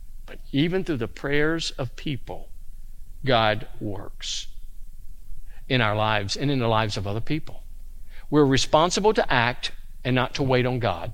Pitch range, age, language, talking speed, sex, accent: 95-140 Hz, 50-69, English, 150 wpm, male, American